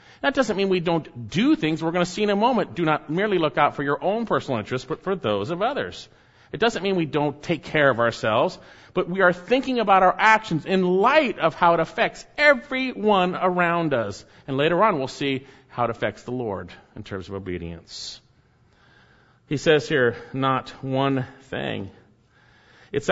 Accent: American